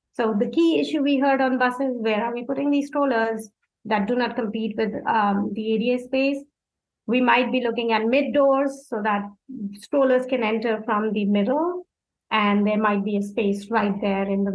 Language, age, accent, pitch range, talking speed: English, 30-49, Indian, 225-275 Hz, 200 wpm